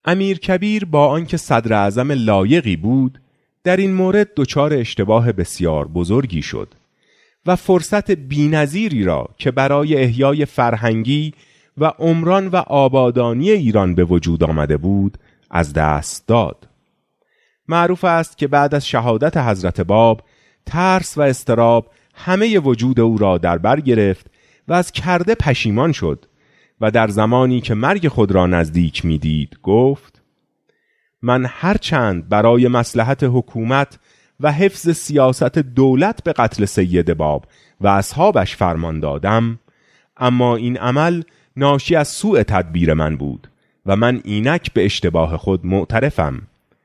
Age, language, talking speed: 30-49, Persian, 130 wpm